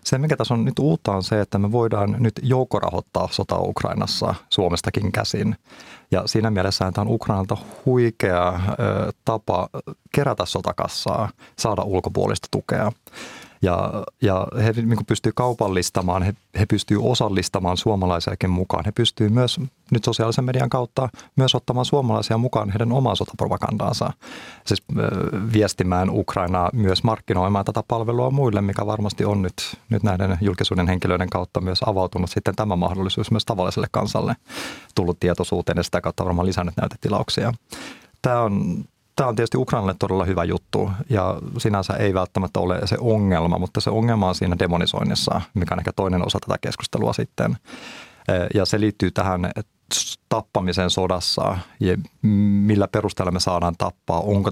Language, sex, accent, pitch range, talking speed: Finnish, male, native, 95-115 Hz, 145 wpm